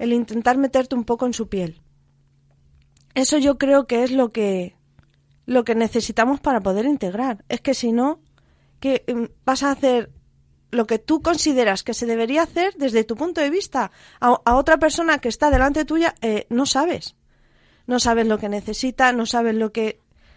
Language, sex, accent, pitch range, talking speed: Spanish, female, Spanish, 215-255 Hz, 185 wpm